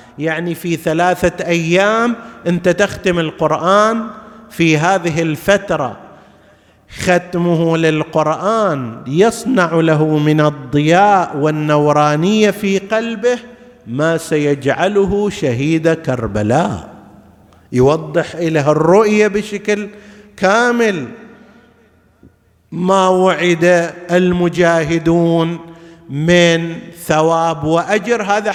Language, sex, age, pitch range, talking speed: Arabic, male, 50-69, 150-205 Hz, 75 wpm